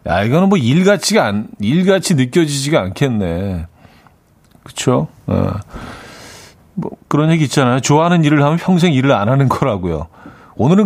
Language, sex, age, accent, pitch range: Korean, male, 40-59, native, 110-160 Hz